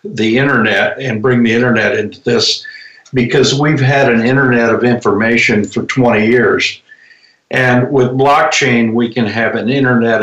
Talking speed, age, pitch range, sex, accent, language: 155 wpm, 60-79, 110-130 Hz, male, American, English